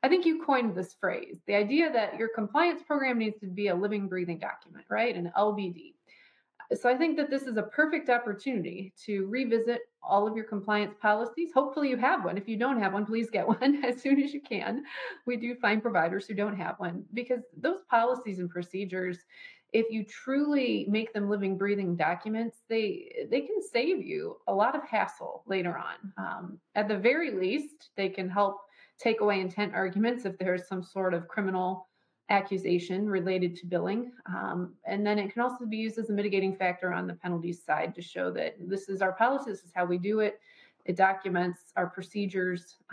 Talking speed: 200 wpm